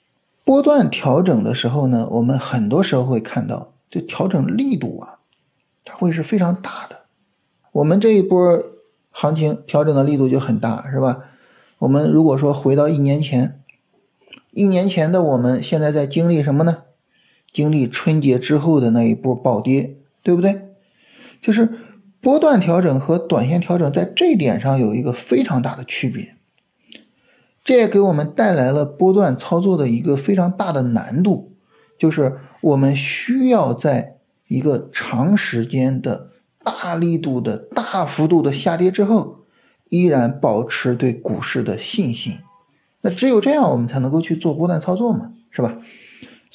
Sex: male